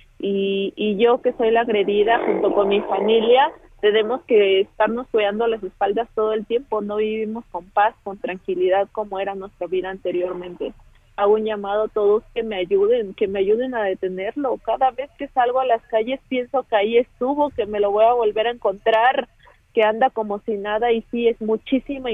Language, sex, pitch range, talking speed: Spanish, female, 210-245 Hz, 195 wpm